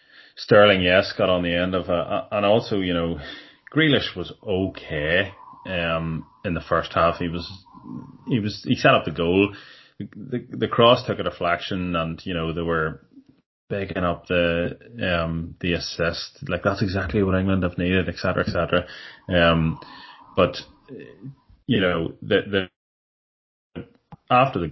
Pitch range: 80-90 Hz